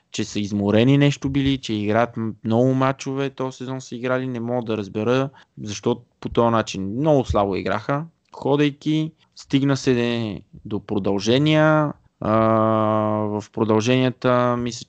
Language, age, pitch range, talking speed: Bulgarian, 20-39, 105-130 Hz, 135 wpm